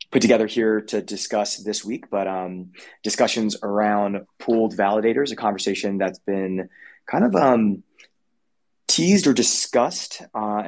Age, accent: 20-39, American